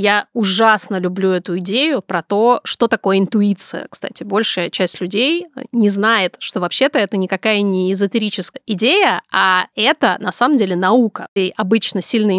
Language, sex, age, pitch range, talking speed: Russian, female, 20-39, 200-245 Hz, 155 wpm